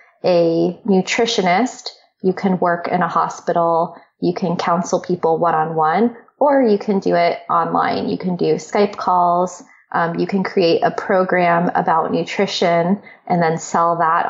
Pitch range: 175-200 Hz